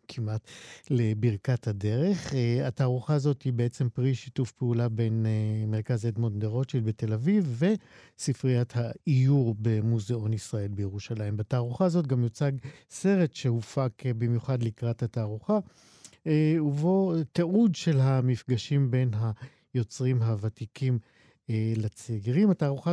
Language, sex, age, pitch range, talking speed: Hebrew, male, 50-69, 120-155 Hz, 110 wpm